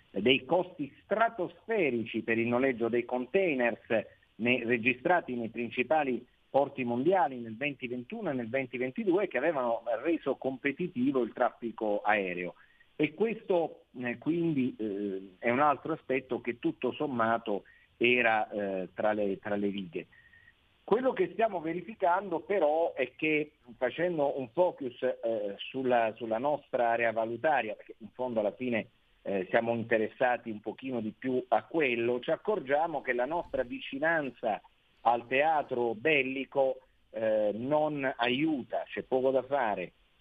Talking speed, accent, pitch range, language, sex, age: 125 wpm, native, 115-150 Hz, Italian, male, 50-69